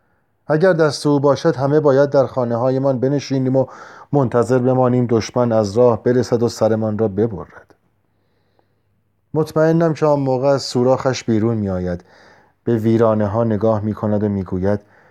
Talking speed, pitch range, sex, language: 135 wpm, 100-135 Hz, male, Persian